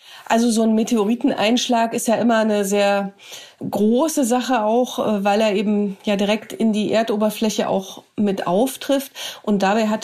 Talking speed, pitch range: 155 wpm, 200-235 Hz